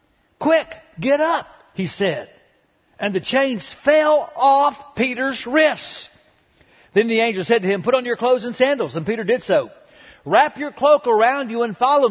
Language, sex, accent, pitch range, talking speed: English, male, American, 200-295 Hz, 175 wpm